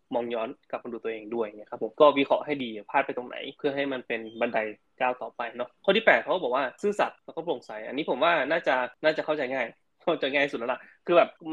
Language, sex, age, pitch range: Thai, male, 20-39, 120-160 Hz